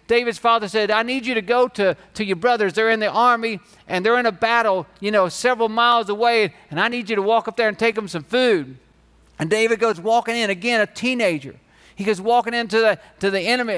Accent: American